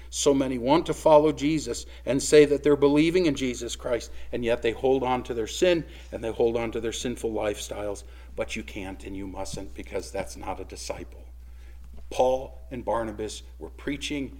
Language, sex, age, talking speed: English, male, 50-69, 190 wpm